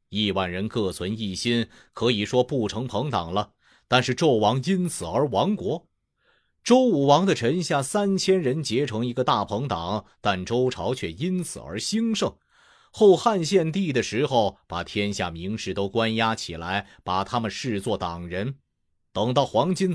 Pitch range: 95-145 Hz